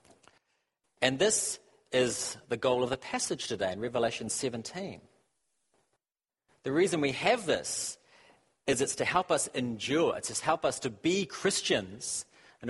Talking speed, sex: 145 wpm, male